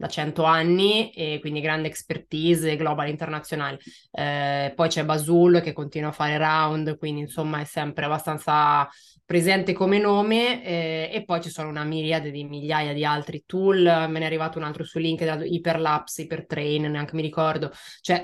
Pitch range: 155-175 Hz